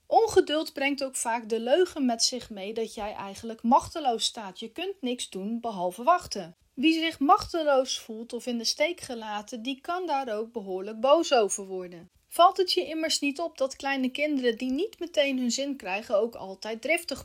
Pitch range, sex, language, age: 225-315 Hz, female, Dutch, 30-49